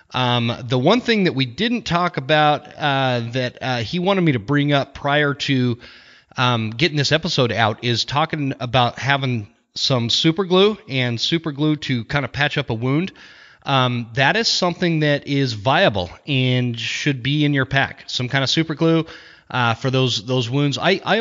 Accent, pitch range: American, 120-155 Hz